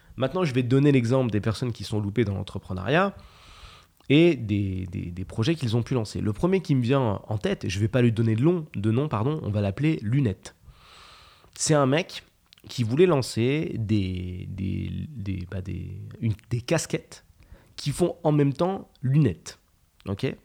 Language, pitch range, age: French, 105-145 Hz, 30-49